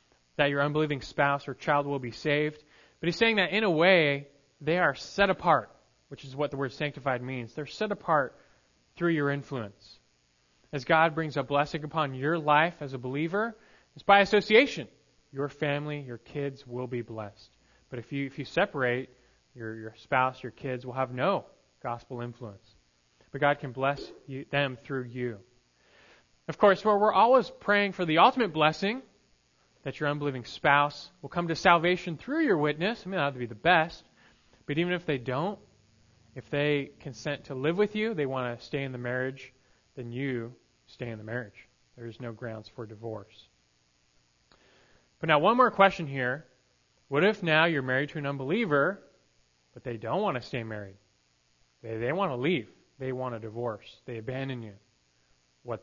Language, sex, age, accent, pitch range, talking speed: English, male, 20-39, American, 115-155 Hz, 185 wpm